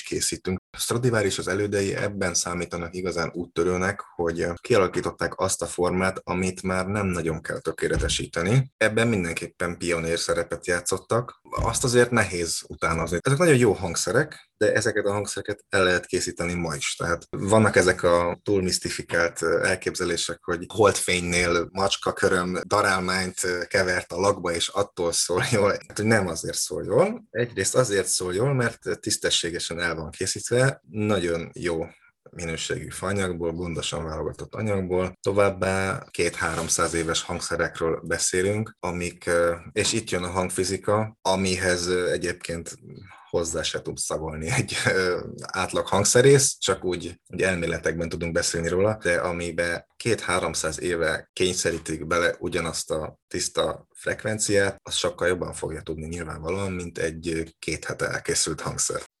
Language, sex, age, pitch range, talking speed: Hungarian, male, 20-39, 85-100 Hz, 130 wpm